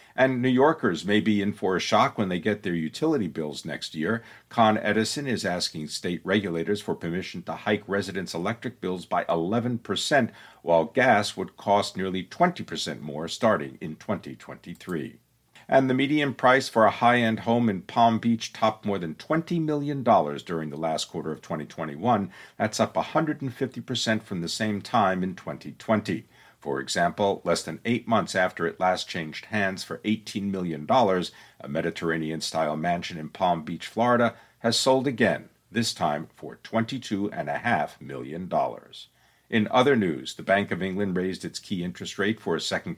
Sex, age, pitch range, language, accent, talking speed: male, 50-69, 90-115 Hz, English, American, 175 wpm